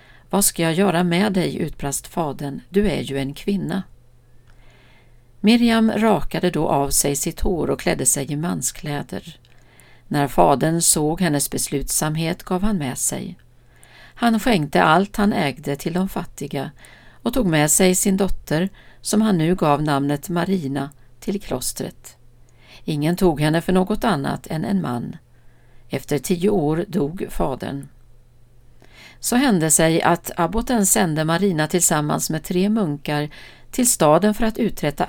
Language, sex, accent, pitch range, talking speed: Swedish, female, native, 140-195 Hz, 145 wpm